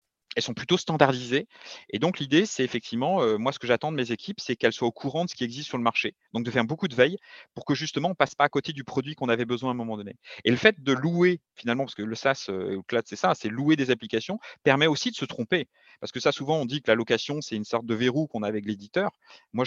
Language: French